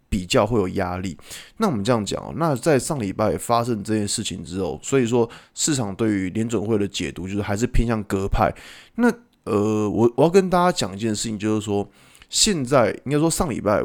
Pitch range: 100-125 Hz